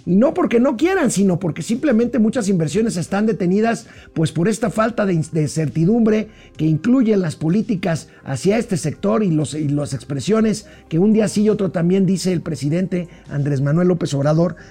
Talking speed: 190 wpm